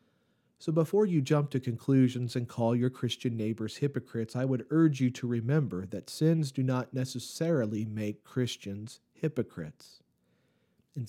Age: 40-59